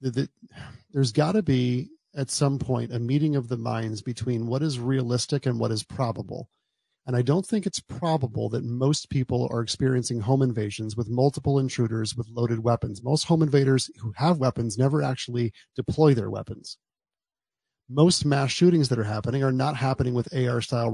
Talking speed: 180 wpm